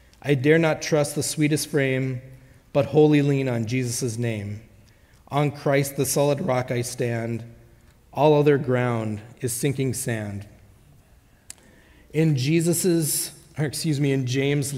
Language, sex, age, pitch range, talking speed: English, male, 30-49, 120-150 Hz, 135 wpm